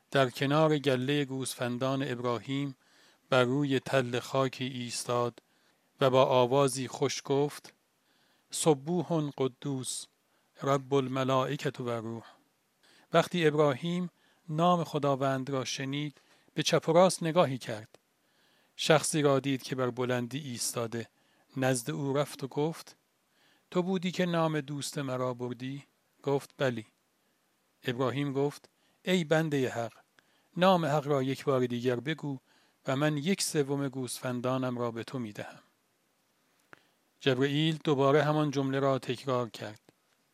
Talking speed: 120 wpm